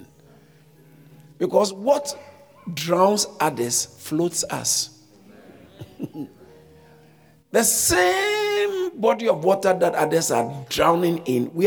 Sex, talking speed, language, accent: male, 85 wpm, English, Nigerian